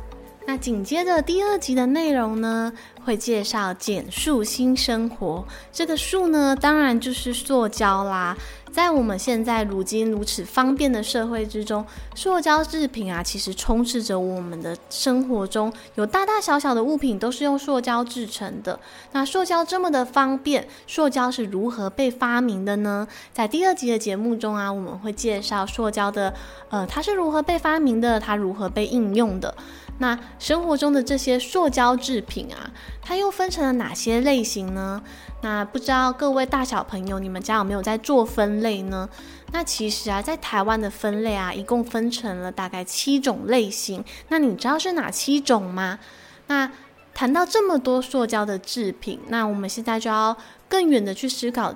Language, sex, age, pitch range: Chinese, female, 20-39, 210-275 Hz